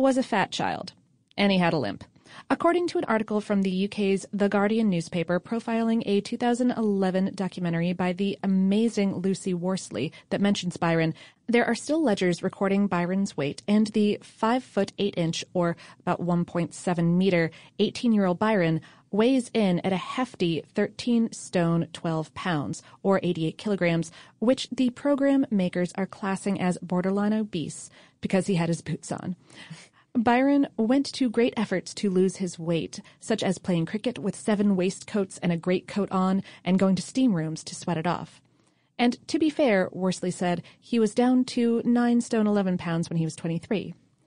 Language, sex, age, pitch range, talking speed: English, female, 30-49, 175-220 Hz, 165 wpm